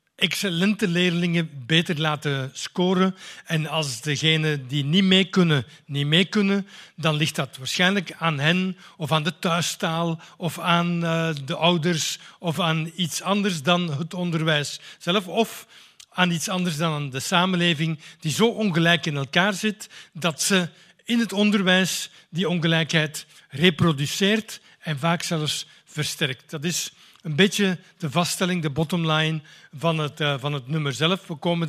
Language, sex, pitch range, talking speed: Dutch, male, 155-185 Hz, 145 wpm